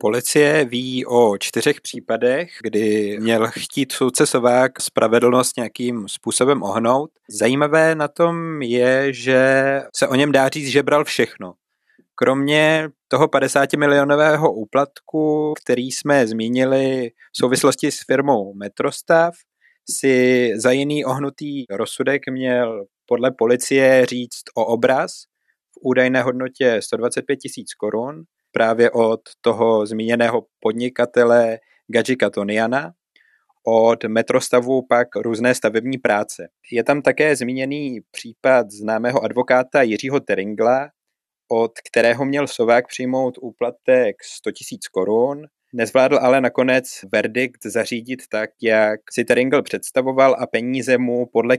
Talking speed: 115 wpm